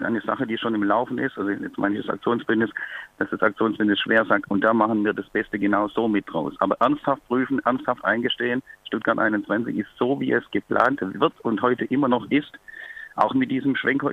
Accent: German